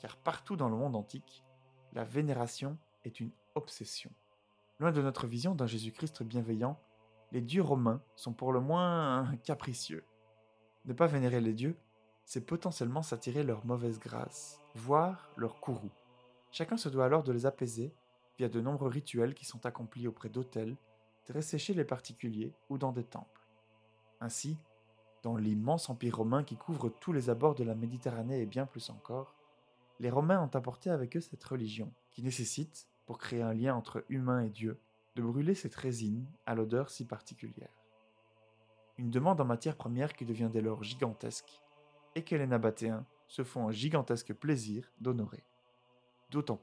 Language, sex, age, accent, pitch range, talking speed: French, male, 20-39, French, 115-145 Hz, 165 wpm